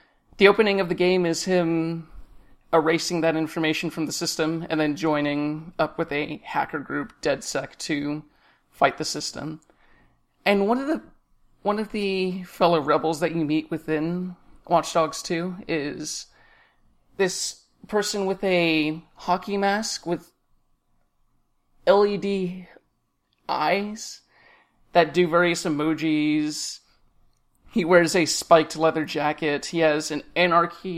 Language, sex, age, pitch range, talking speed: English, male, 30-49, 155-180 Hz, 125 wpm